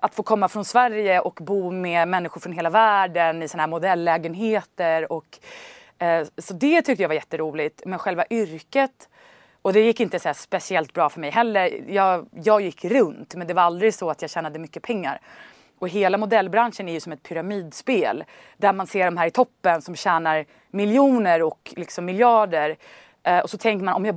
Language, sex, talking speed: Swedish, female, 195 wpm